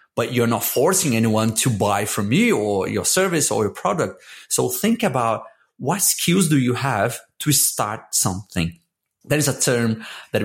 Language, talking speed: English, 170 wpm